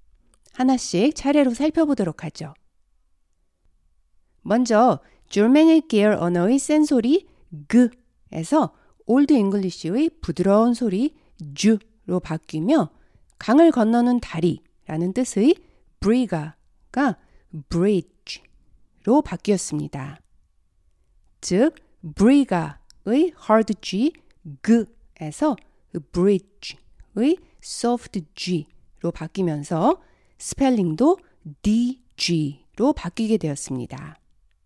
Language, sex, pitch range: Korean, female, 155-255 Hz